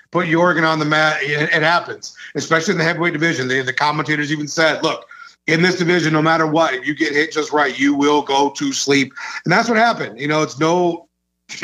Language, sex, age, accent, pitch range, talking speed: English, male, 40-59, American, 150-185 Hz, 215 wpm